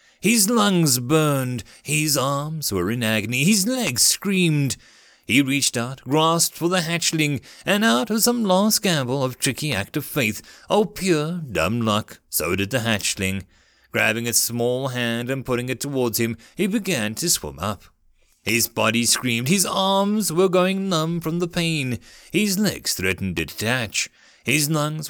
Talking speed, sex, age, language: 165 wpm, male, 30-49, English